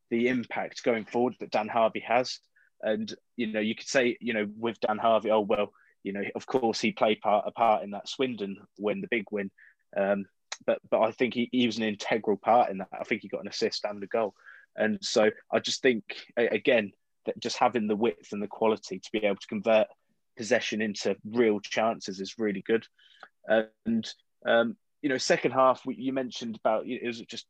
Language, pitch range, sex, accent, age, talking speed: English, 105-120 Hz, male, British, 20-39, 220 wpm